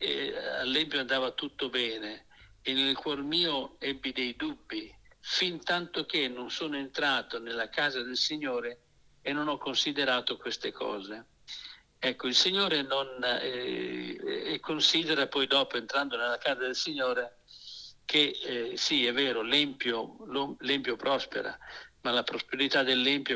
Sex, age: male, 60-79